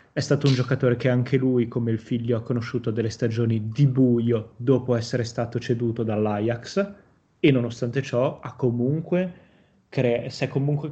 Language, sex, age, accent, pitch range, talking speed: Italian, male, 20-39, native, 115-130 Hz, 165 wpm